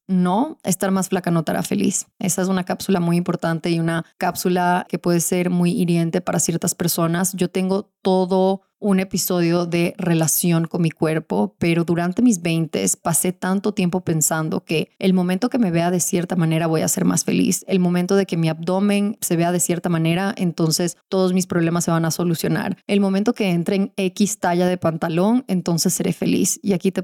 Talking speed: 200 wpm